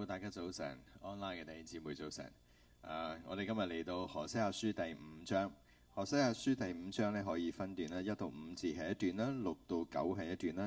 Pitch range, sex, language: 85-115 Hz, male, Chinese